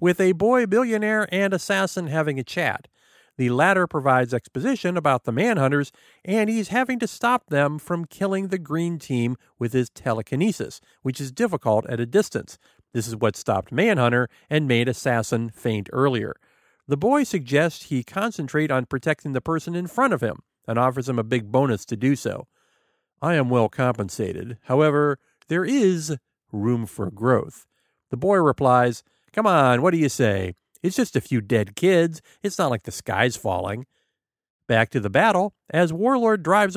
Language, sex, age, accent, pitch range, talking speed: English, male, 50-69, American, 125-180 Hz, 175 wpm